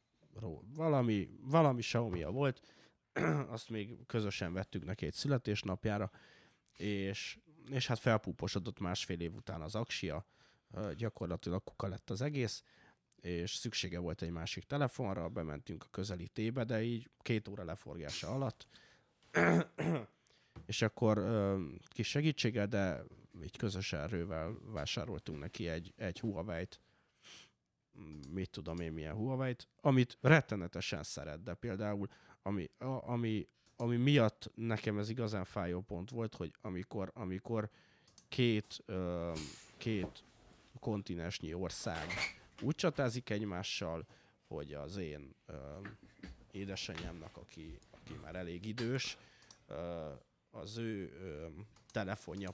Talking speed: 110 wpm